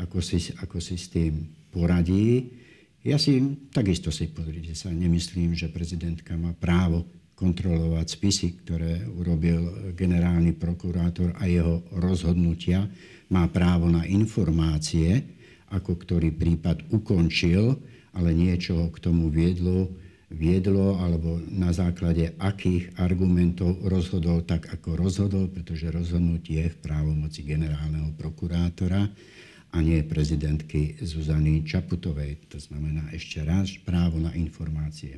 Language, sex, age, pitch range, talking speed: Slovak, male, 60-79, 80-90 Hz, 120 wpm